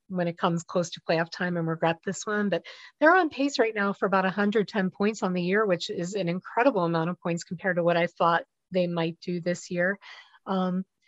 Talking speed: 225 wpm